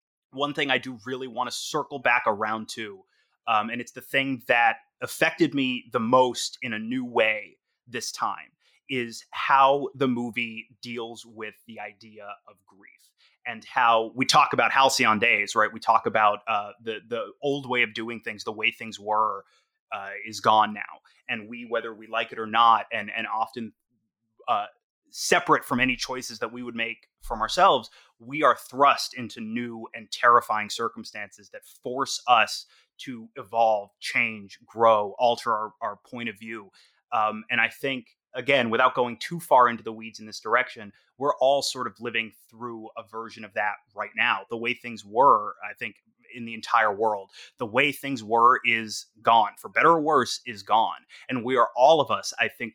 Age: 30-49